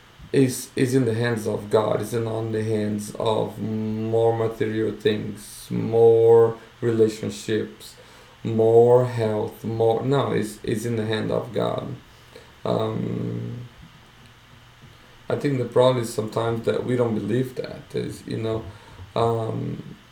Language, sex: English, male